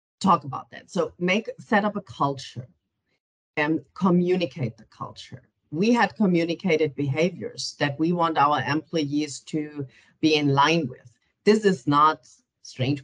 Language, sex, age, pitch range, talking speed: English, female, 40-59, 140-180 Hz, 145 wpm